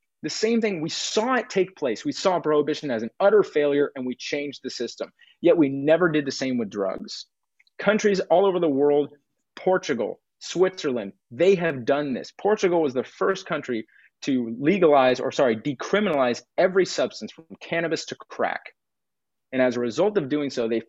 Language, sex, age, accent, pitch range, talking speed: English, male, 30-49, American, 125-175 Hz, 180 wpm